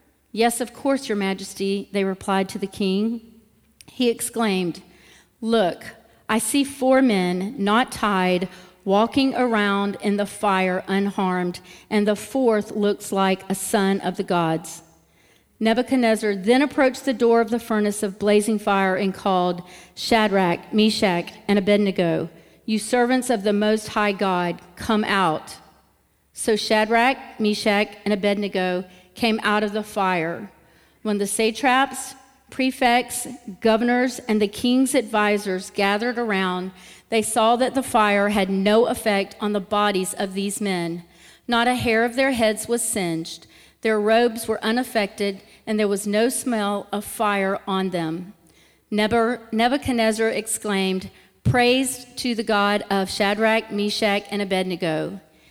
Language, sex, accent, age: English, female, American, 40-59